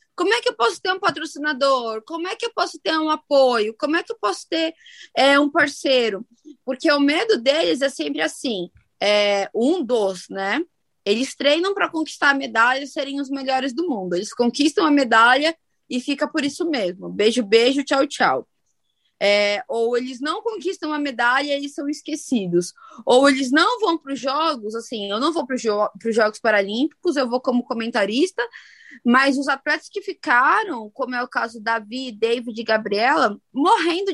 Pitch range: 235-315 Hz